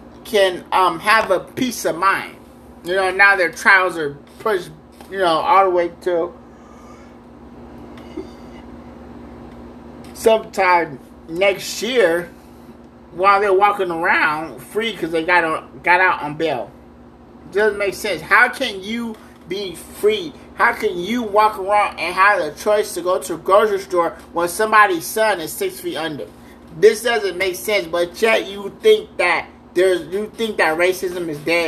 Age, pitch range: 30-49, 175-230 Hz